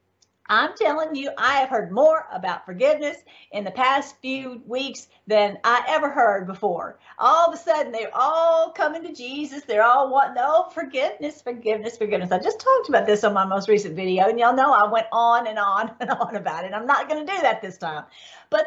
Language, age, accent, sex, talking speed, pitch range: English, 50-69, American, female, 210 wpm, 210-280 Hz